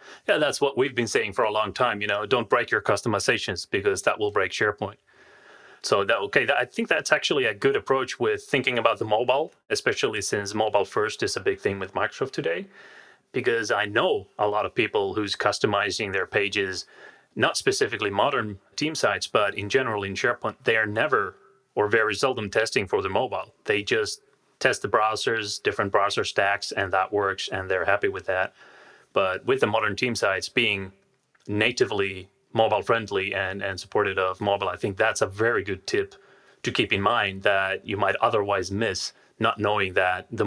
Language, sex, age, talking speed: English, male, 30-49, 190 wpm